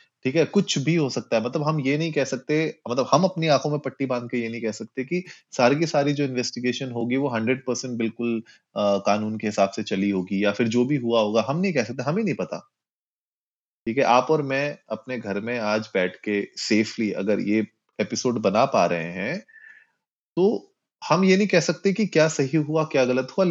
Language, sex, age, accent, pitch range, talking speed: Hindi, male, 30-49, native, 115-155 Hz, 225 wpm